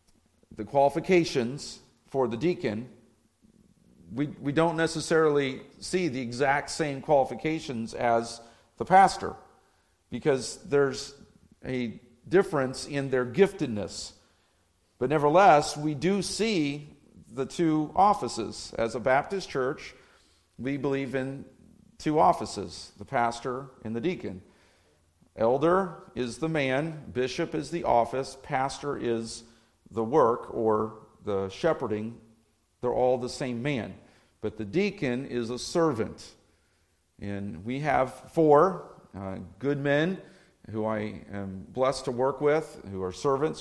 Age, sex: 50-69, male